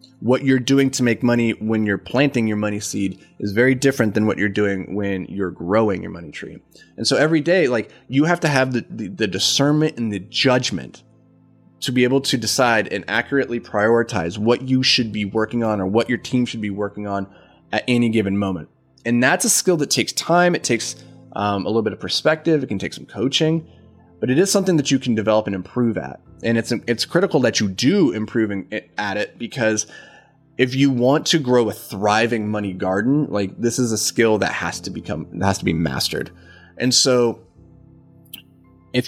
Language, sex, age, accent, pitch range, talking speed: English, male, 20-39, American, 100-130 Hz, 205 wpm